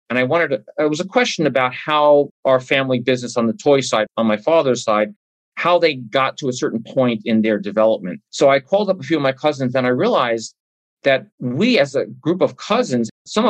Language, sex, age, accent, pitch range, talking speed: English, male, 40-59, American, 115-145 Hz, 220 wpm